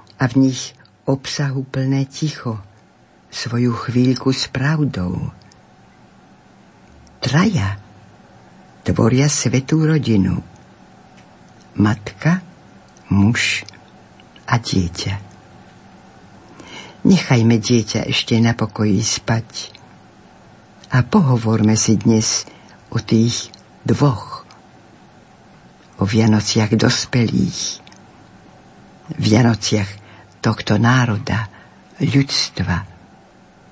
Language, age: Slovak, 60-79